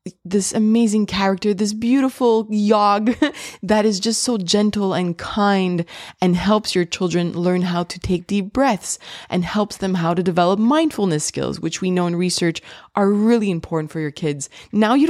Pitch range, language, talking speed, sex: 155-210 Hz, English, 175 wpm, female